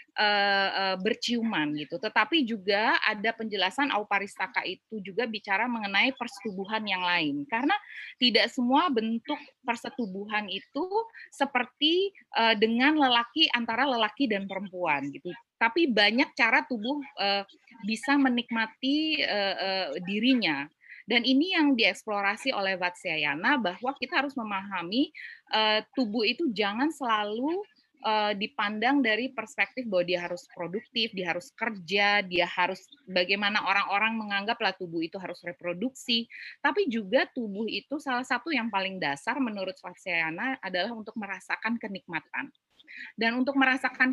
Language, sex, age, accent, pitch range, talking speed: Indonesian, female, 20-39, native, 200-265 Hz, 125 wpm